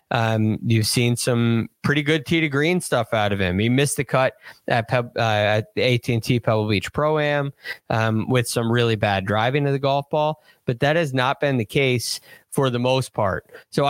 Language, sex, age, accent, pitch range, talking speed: English, male, 20-39, American, 110-135 Hz, 195 wpm